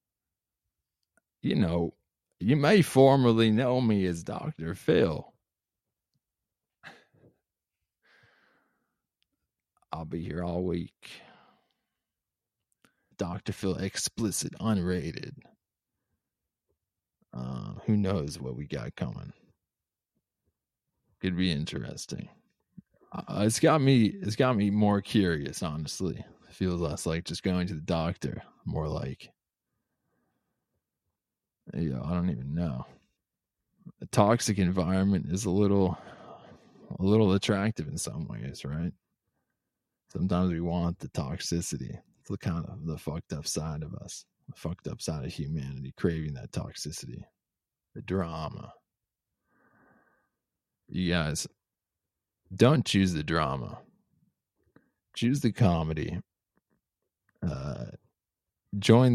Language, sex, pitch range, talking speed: English, male, 85-105 Hz, 105 wpm